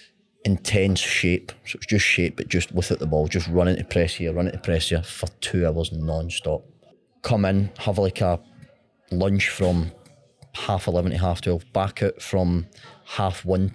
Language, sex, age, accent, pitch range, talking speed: English, male, 30-49, British, 90-110 Hz, 180 wpm